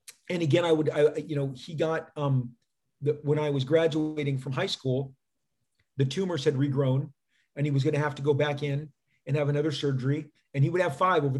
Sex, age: male, 40-59